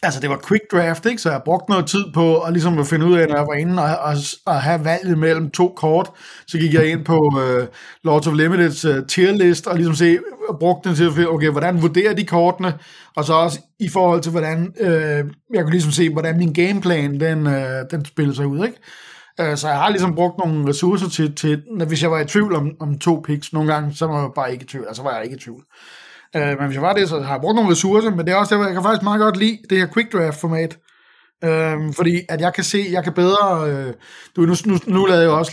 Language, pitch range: Danish, 155-190 Hz